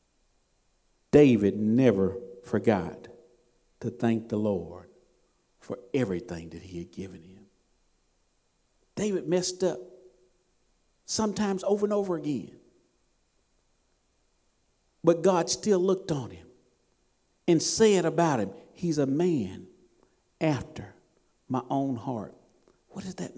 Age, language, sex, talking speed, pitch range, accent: 50-69, English, male, 110 wpm, 120-180 Hz, American